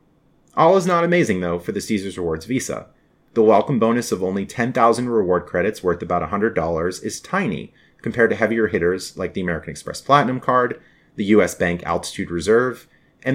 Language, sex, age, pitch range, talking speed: English, male, 30-49, 90-130 Hz, 175 wpm